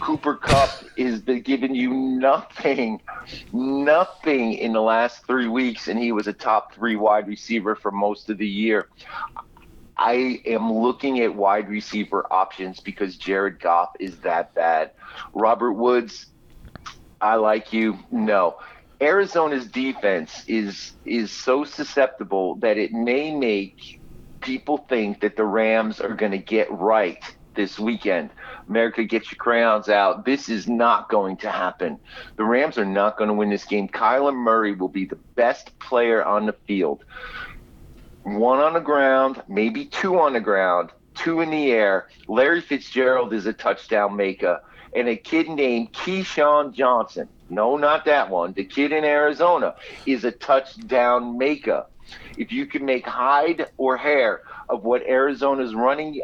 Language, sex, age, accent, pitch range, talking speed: English, male, 40-59, American, 105-140 Hz, 155 wpm